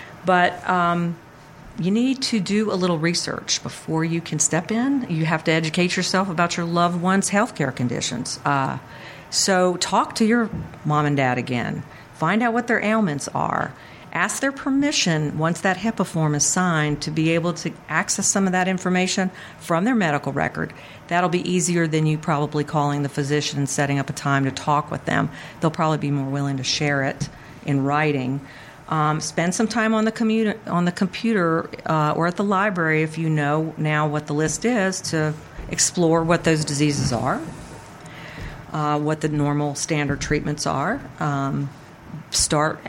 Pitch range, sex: 145-185 Hz, female